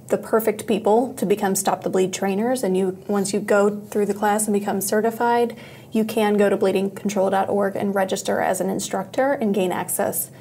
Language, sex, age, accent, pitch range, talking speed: English, female, 20-39, American, 195-220 Hz, 190 wpm